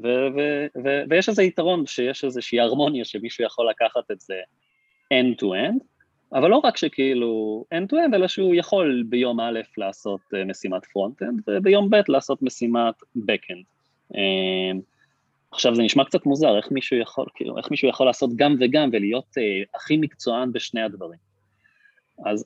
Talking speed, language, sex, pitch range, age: 160 wpm, Hebrew, male, 110-145 Hz, 30-49